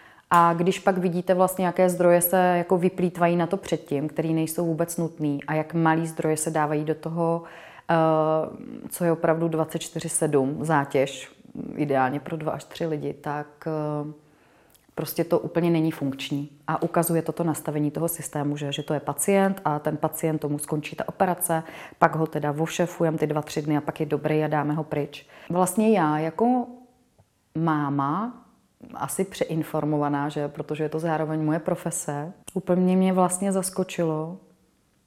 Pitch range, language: 155-175 Hz, Czech